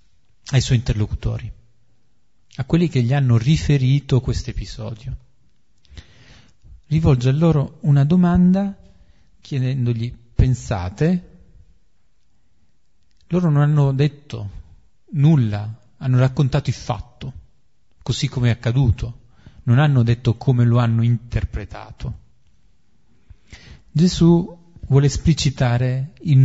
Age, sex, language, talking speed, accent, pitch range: 40-59, male, Italian, 95 wpm, native, 110-135 Hz